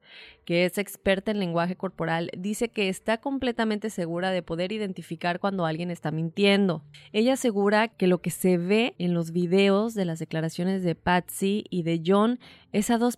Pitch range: 175-220 Hz